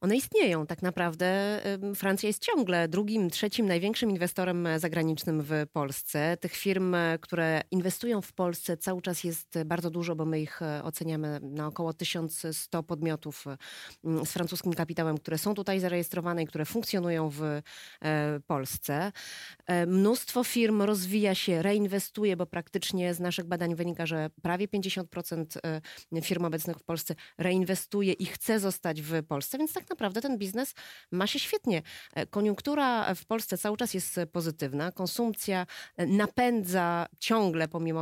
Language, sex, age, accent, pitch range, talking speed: Polish, female, 20-39, native, 165-205 Hz, 140 wpm